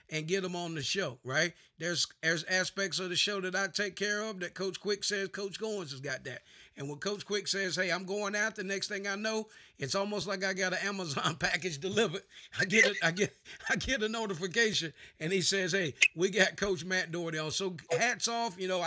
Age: 50-69